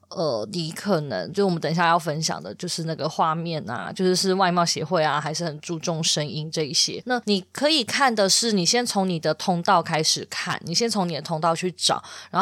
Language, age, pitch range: Chinese, 20-39, 165-205 Hz